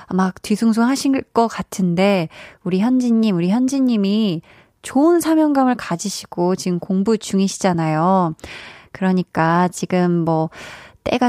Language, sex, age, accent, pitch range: Korean, female, 20-39, native, 185-270 Hz